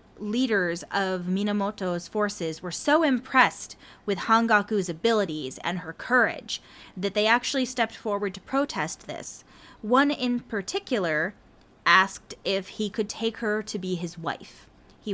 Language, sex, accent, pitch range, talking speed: English, female, American, 180-225 Hz, 140 wpm